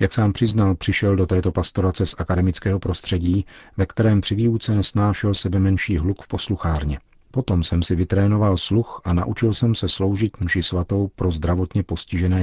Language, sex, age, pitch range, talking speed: Czech, male, 40-59, 90-100 Hz, 170 wpm